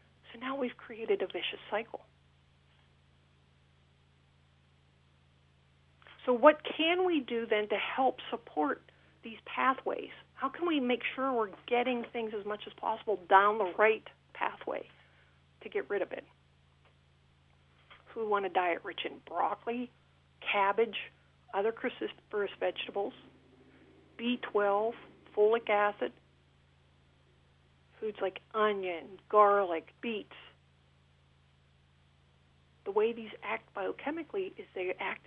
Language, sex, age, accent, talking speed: English, female, 50-69, American, 115 wpm